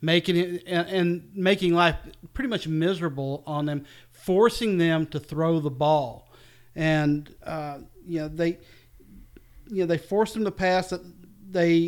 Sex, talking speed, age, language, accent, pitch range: male, 150 wpm, 40-59, English, American, 140-175 Hz